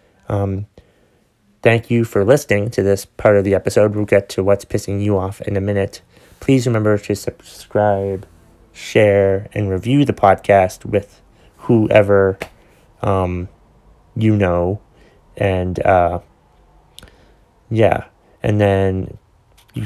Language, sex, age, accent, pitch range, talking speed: English, male, 30-49, American, 95-105 Hz, 125 wpm